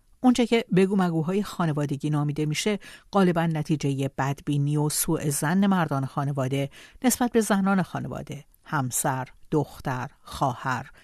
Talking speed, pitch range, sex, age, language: 115 wpm, 145-190 Hz, female, 60-79, Persian